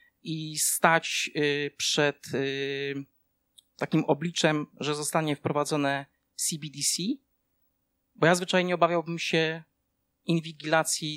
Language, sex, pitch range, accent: Polish, male, 140-155 Hz, native